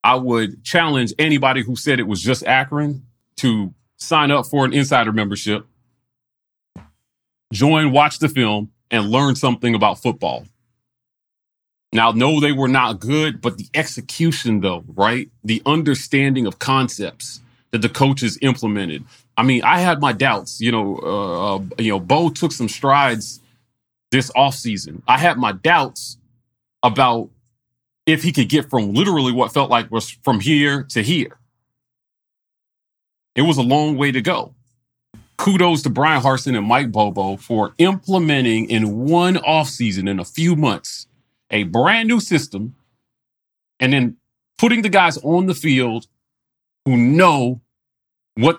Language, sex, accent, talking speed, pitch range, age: English, male, American, 150 wpm, 115-145 Hz, 30-49